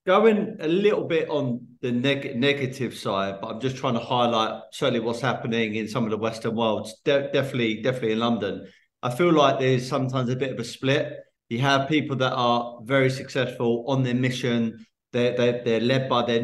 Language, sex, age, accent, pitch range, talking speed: English, male, 30-49, British, 115-135 Hz, 195 wpm